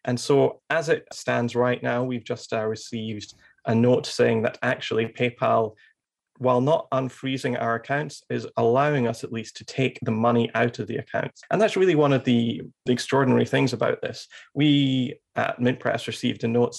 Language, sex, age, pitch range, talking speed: English, male, 30-49, 115-135 Hz, 190 wpm